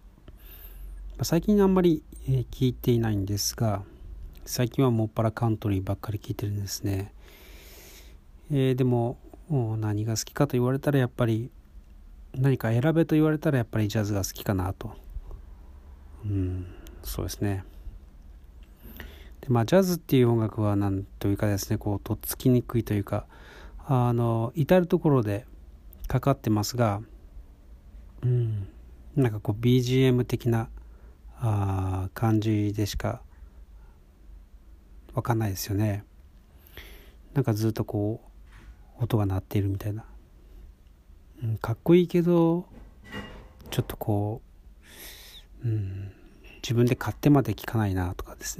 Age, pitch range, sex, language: 40-59, 70-120 Hz, male, Japanese